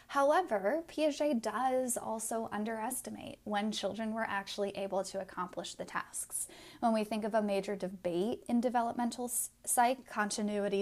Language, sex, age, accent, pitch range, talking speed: English, female, 10-29, American, 195-250 Hz, 140 wpm